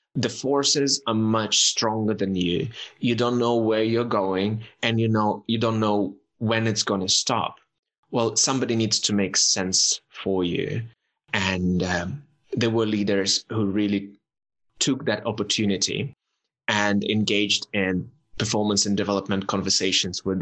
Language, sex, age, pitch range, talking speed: English, male, 20-39, 100-125 Hz, 145 wpm